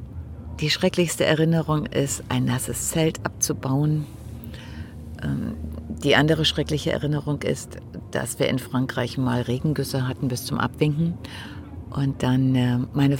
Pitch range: 115-160 Hz